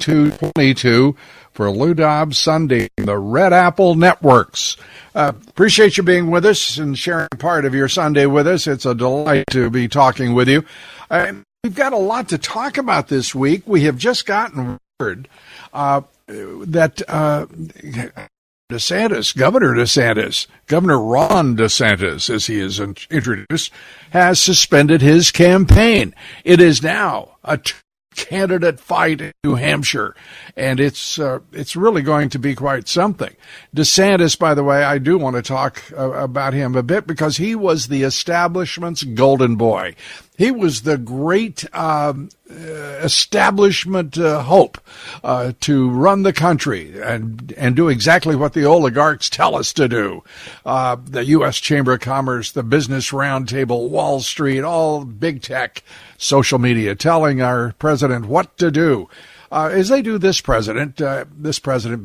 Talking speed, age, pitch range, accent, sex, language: 155 wpm, 60-79, 130-170 Hz, American, male, English